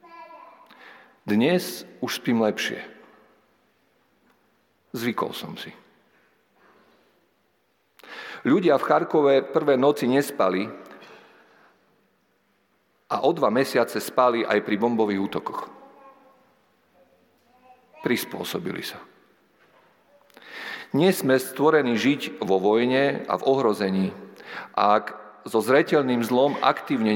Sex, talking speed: male, 85 wpm